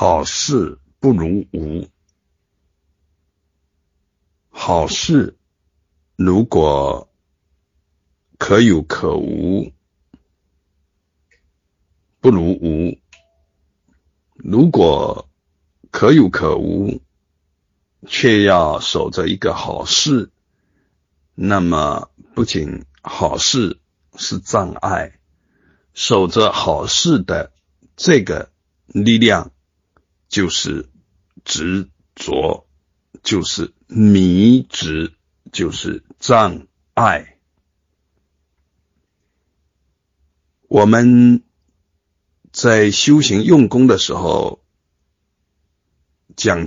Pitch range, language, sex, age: 75-100 Hz, Chinese, male, 60-79